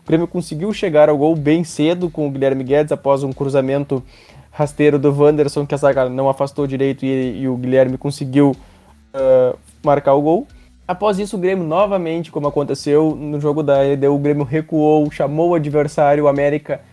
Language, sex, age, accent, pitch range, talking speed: Portuguese, male, 20-39, Brazilian, 140-170 Hz, 180 wpm